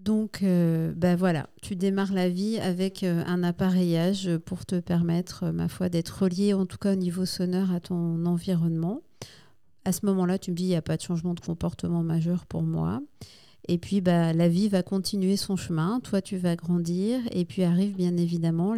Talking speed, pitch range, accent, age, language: 200 wpm, 175-195 Hz, French, 50-69, French